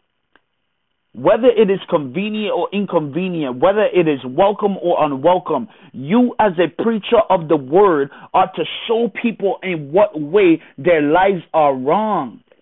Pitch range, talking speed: 175-215 Hz, 145 wpm